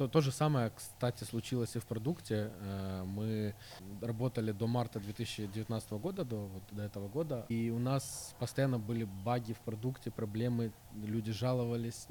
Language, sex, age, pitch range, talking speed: Russian, male, 20-39, 105-120 Hz, 150 wpm